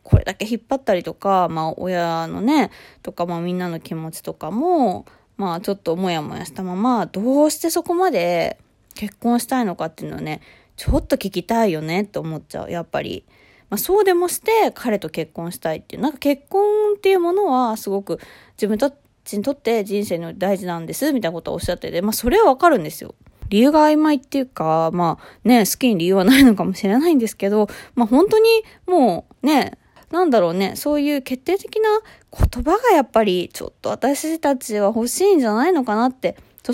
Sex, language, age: female, Japanese, 20-39